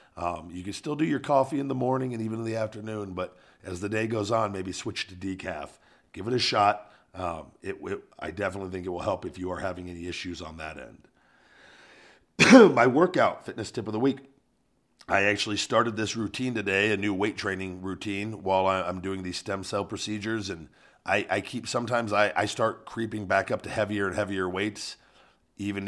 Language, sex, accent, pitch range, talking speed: English, male, American, 95-110 Hz, 205 wpm